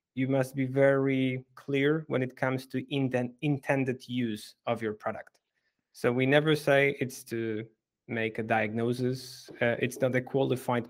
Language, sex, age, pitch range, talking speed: English, male, 20-39, 115-140 Hz, 155 wpm